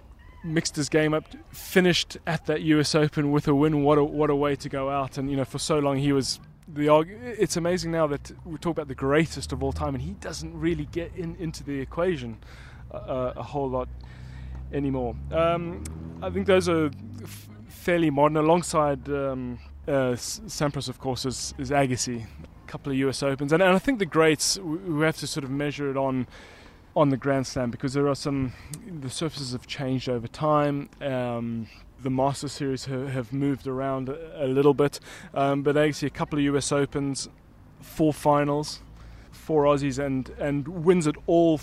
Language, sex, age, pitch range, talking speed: English, male, 20-39, 130-155 Hz, 195 wpm